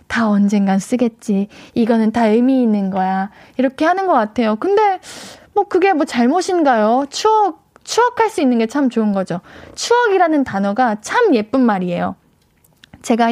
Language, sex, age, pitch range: Korean, female, 20-39, 220-320 Hz